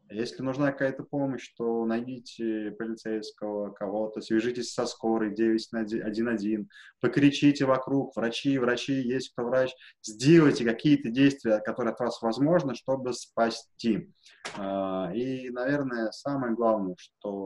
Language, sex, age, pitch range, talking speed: Russian, male, 20-39, 105-125 Hz, 115 wpm